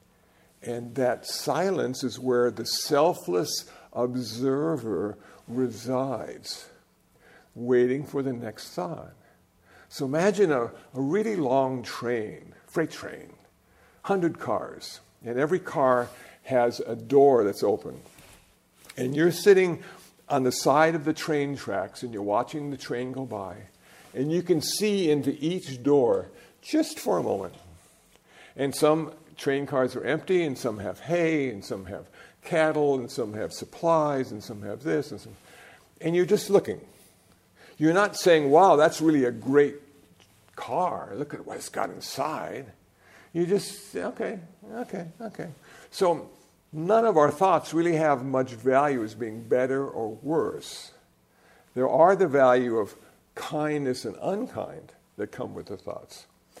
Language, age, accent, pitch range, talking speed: English, 50-69, American, 125-165 Hz, 145 wpm